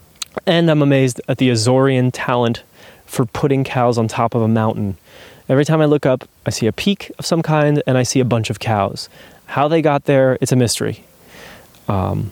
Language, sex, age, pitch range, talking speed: English, male, 20-39, 110-140 Hz, 205 wpm